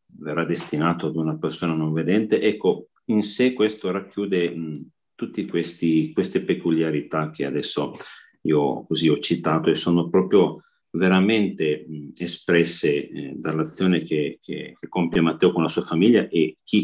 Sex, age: male, 40-59